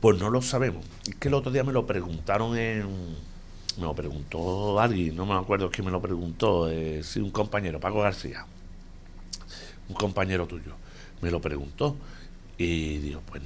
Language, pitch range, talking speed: Spanish, 85-105 Hz, 170 wpm